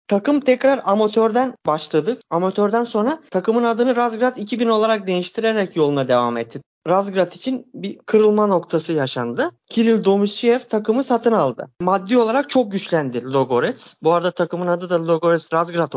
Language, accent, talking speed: Turkish, native, 145 wpm